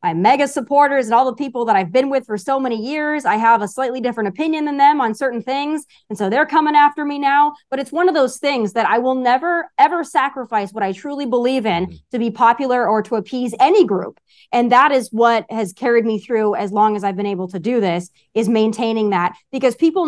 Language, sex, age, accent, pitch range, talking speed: English, female, 20-39, American, 215-270 Hz, 240 wpm